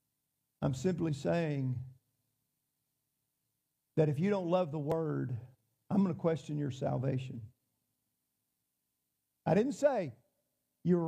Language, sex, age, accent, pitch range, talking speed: English, male, 50-69, American, 130-190 Hz, 110 wpm